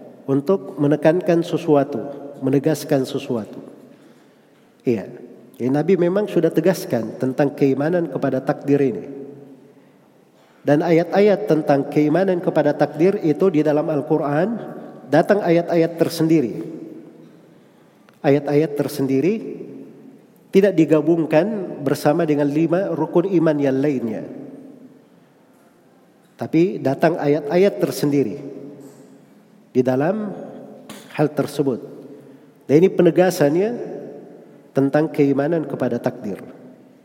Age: 40-59